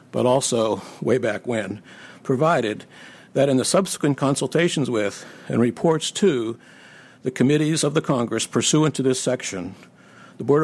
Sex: male